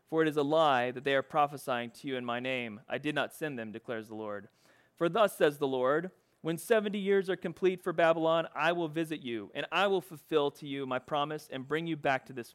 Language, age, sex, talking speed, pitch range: English, 30-49, male, 250 wpm, 125-165 Hz